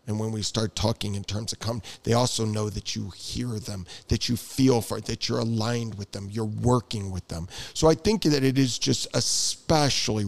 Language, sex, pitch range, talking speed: English, male, 110-140 Hz, 215 wpm